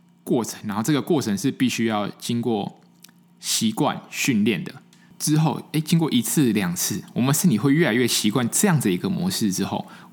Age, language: 20-39, Chinese